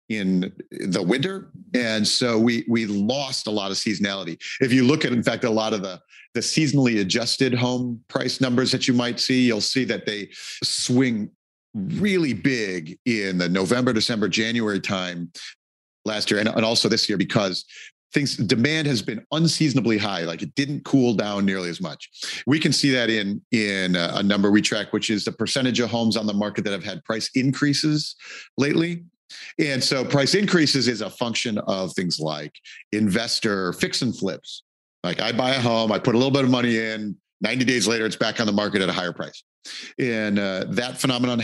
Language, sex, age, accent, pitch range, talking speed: English, male, 40-59, American, 100-130 Hz, 195 wpm